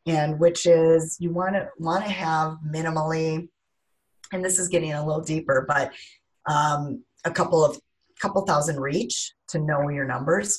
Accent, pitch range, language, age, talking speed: American, 145-180 Hz, English, 30-49, 165 wpm